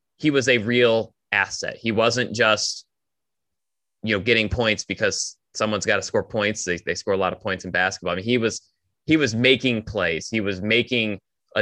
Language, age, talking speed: English, 20-39, 200 wpm